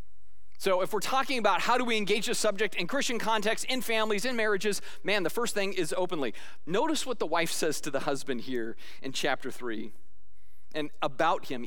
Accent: American